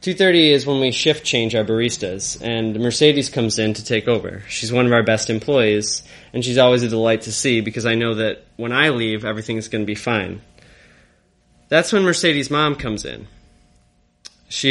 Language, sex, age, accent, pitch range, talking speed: English, male, 20-39, American, 105-125 Hz, 190 wpm